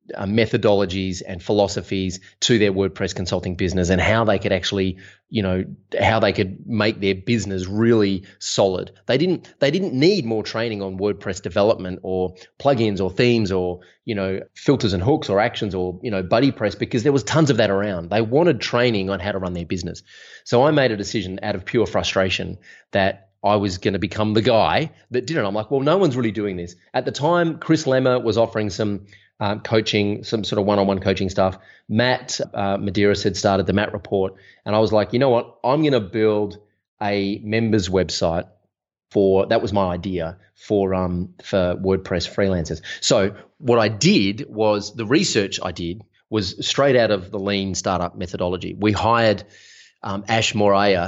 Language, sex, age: English, male, 20-39